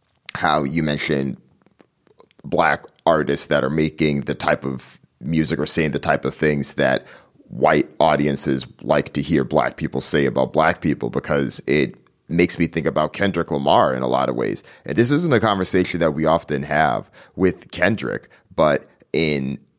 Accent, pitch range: American, 70-85 Hz